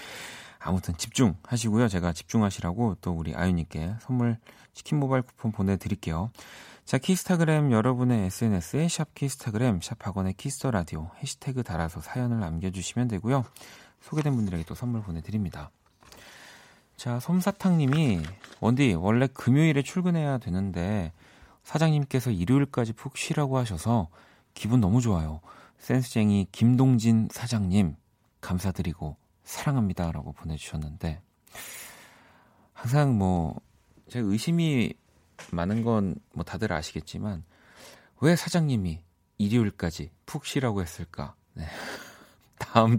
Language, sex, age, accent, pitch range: Korean, male, 40-59, native, 90-130 Hz